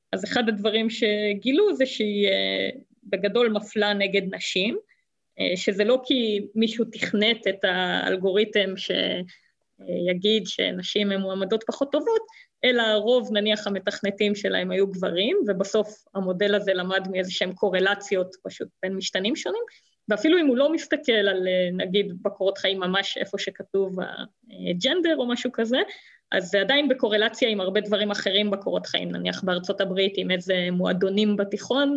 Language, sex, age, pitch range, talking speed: Hebrew, female, 20-39, 195-240 Hz, 135 wpm